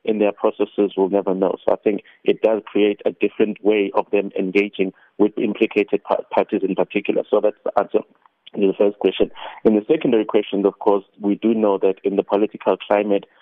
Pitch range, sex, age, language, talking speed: 95-105 Hz, male, 30-49, English, 200 wpm